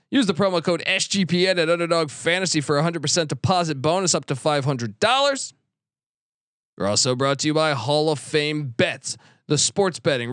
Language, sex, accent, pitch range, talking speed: English, male, American, 145-185 Hz, 170 wpm